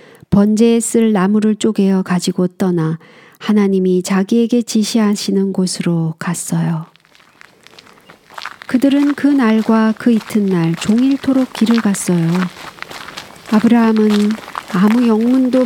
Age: 50-69